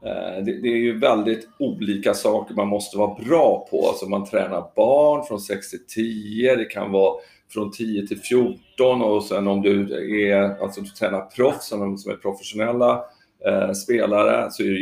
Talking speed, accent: 175 wpm, native